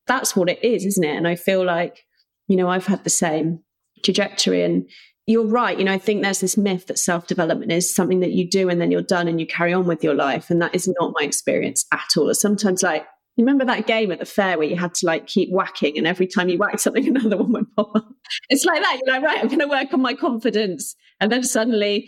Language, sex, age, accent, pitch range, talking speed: English, female, 30-49, British, 170-220 Hz, 260 wpm